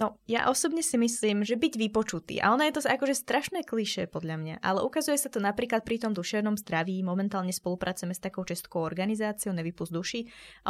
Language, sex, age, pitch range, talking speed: Slovak, female, 20-39, 190-230 Hz, 195 wpm